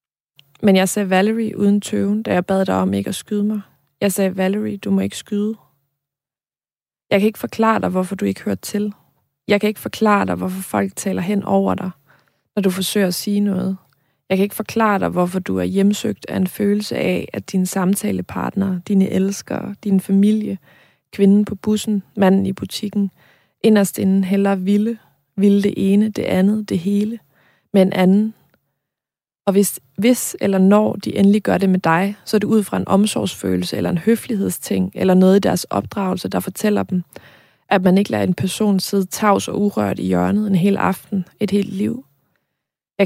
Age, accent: 20-39, native